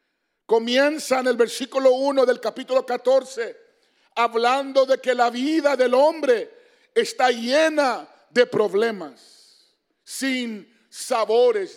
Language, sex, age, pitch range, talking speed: English, male, 50-69, 245-320 Hz, 105 wpm